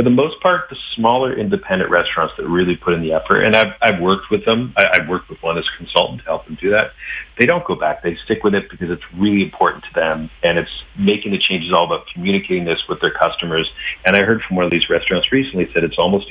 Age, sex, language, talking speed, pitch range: 40-59, male, English, 260 wpm, 85-115 Hz